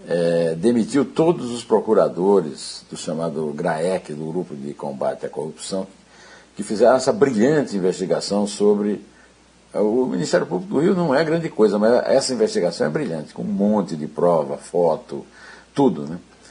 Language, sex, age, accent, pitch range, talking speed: Portuguese, male, 60-79, Brazilian, 90-120 Hz, 155 wpm